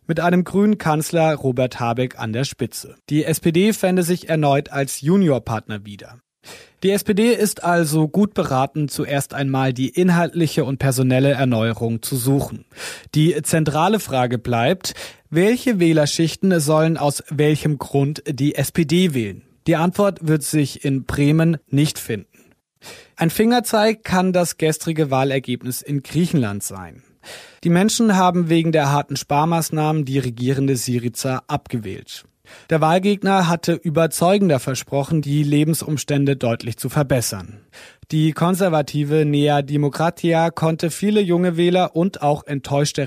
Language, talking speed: German, 130 wpm